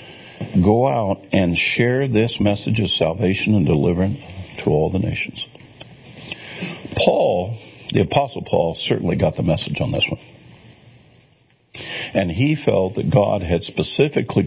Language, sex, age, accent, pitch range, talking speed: English, male, 60-79, American, 95-130 Hz, 135 wpm